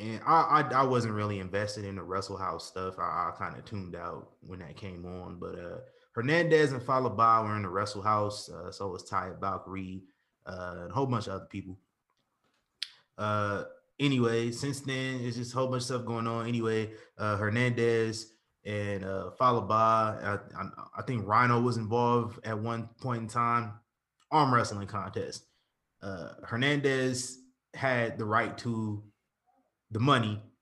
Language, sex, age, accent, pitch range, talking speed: English, male, 20-39, American, 100-120 Hz, 170 wpm